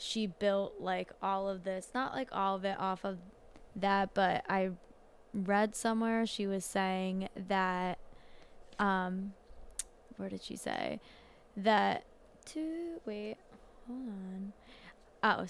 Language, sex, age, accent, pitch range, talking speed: English, female, 10-29, American, 185-205 Hz, 130 wpm